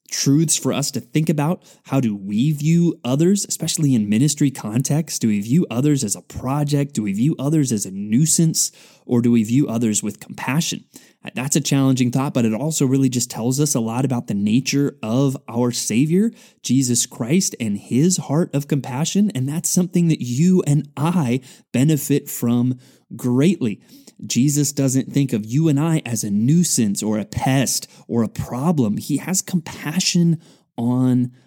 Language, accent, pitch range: English, American, 125-165 Hz